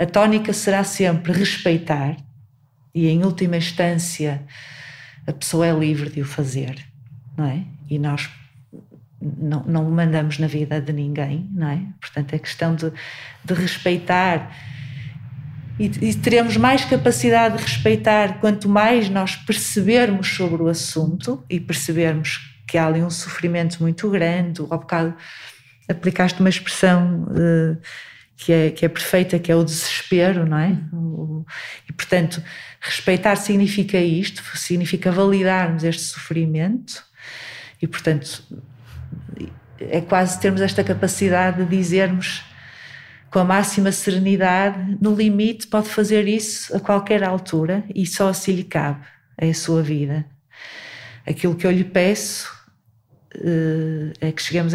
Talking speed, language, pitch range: 135 wpm, Portuguese, 150-190 Hz